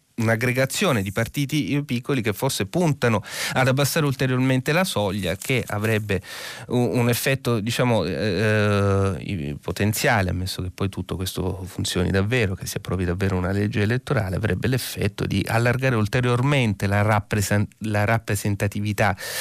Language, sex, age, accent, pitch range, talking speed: Italian, male, 30-49, native, 95-120 Hz, 130 wpm